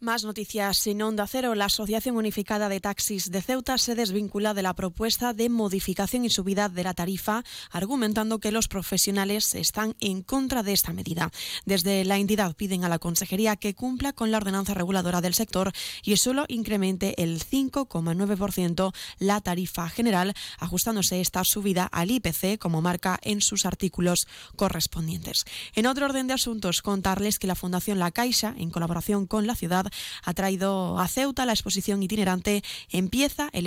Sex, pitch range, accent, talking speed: female, 185-220 Hz, Spanish, 165 wpm